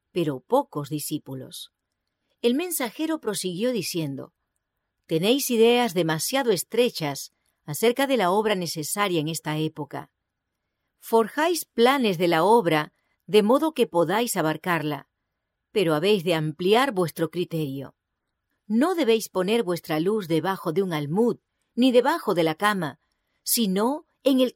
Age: 40-59